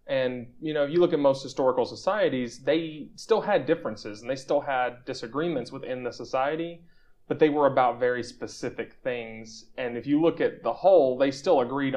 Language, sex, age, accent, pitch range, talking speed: English, male, 30-49, American, 110-140 Hz, 195 wpm